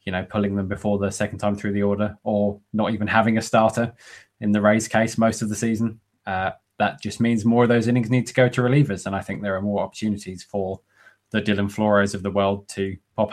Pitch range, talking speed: 95-110 Hz, 245 wpm